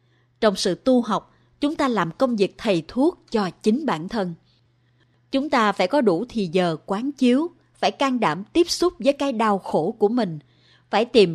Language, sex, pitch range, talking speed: Vietnamese, female, 165-250 Hz, 195 wpm